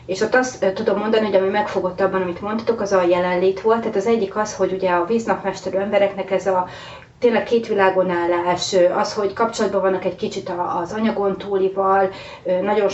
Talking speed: 180 wpm